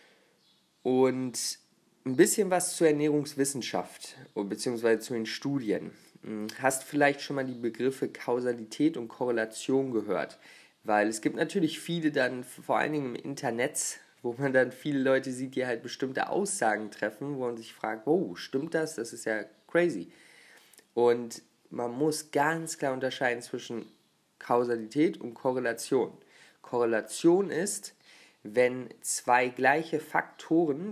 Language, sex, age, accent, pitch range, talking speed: German, male, 20-39, German, 115-150 Hz, 135 wpm